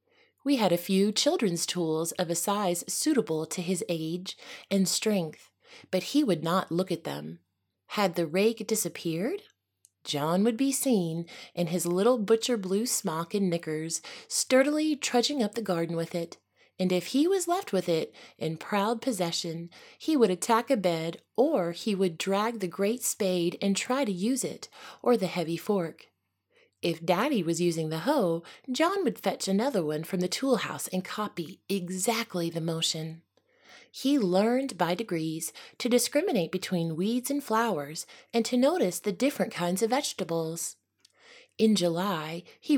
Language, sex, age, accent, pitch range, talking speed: English, female, 30-49, American, 170-240 Hz, 165 wpm